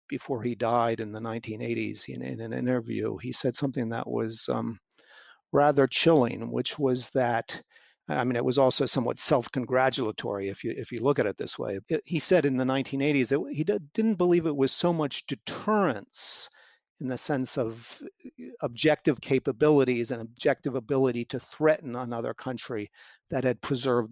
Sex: male